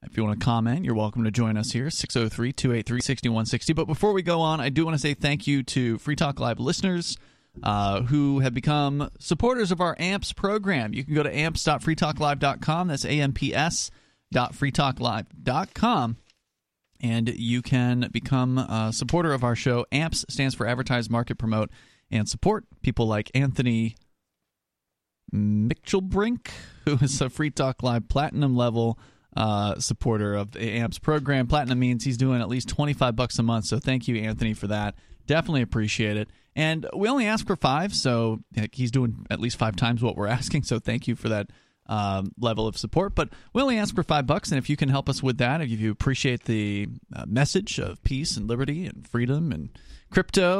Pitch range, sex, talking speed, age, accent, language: 115-145 Hz, male, 180 wpm, 30-49, American, English